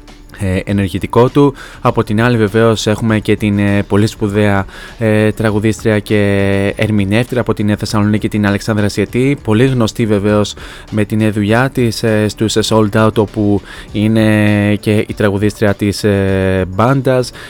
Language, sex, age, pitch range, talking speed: Greek, male, 20-39, 100-110 Hz, 135 wpm